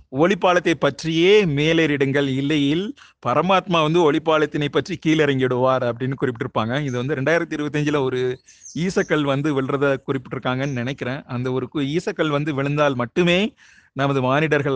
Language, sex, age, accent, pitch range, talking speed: Tamil, male, 30-49, native, 125-150 Hz, 120 wpm